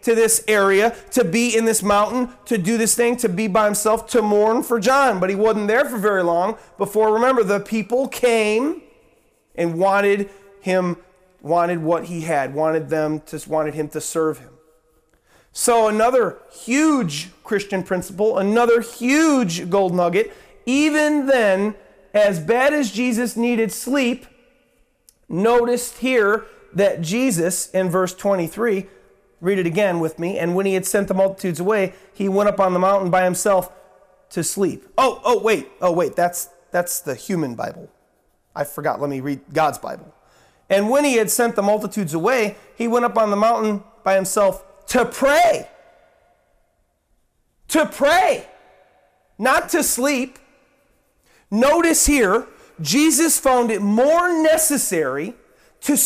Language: English